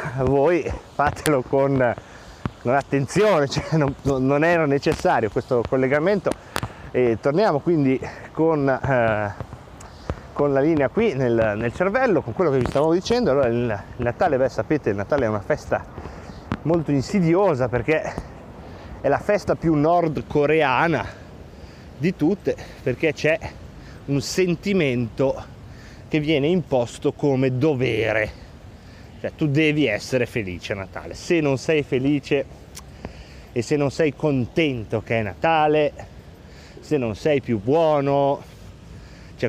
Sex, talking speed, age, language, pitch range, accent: male, 125 wpm, 30-49, Italian, 115-150 Hz, native